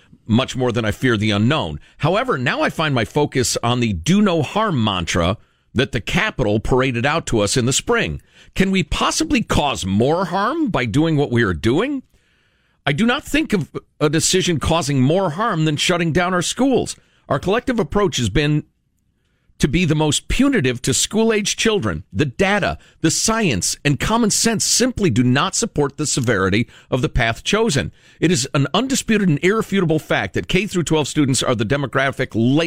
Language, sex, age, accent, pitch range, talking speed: English, male, 50-69, American, 115-175 Hz, 180 wpm